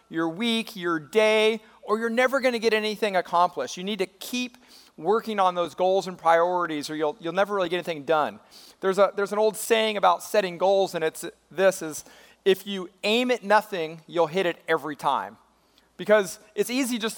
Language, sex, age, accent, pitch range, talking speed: English, male, 40-59, American, 180-235 Hz, 200 wpm